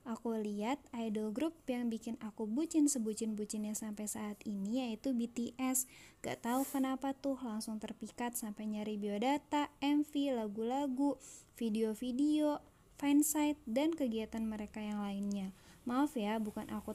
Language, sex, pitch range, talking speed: Indonesian, female, 215-255 Hz, 125 wpm